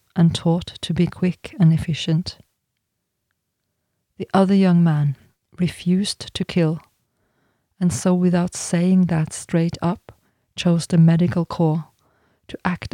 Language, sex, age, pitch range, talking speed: English, female, 40-59, 155-175 Hz, 125 wpm